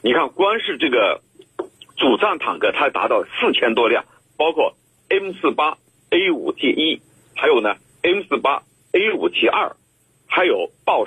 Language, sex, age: Chinese, male, 50-69